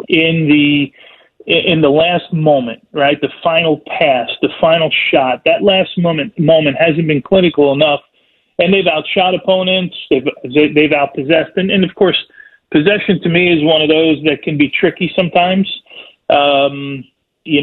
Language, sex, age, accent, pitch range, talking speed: English, male, 40-59, American, 145-175 Hz, 155 wpm